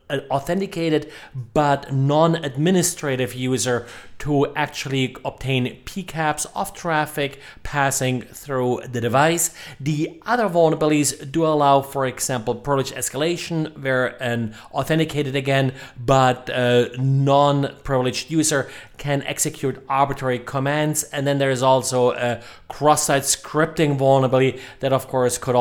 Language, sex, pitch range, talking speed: English, male, 125-150 Hz, 115 wpm